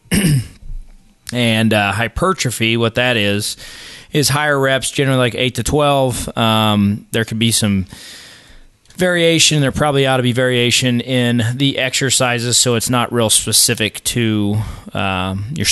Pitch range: 100-125 Hz